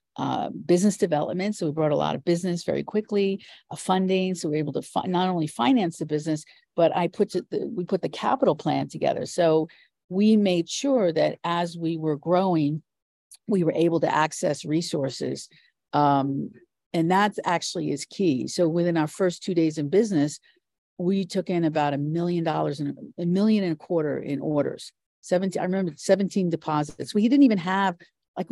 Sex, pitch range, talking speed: female, 150-190 Hz, 190 wpm